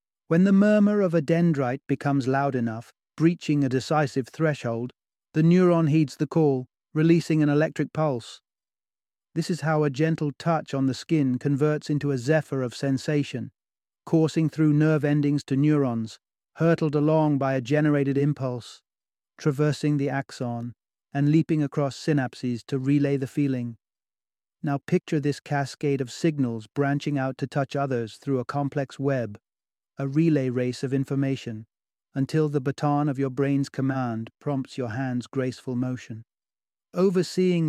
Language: English